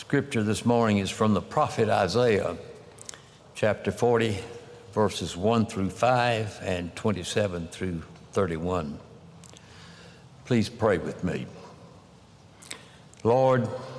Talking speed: 100 wpm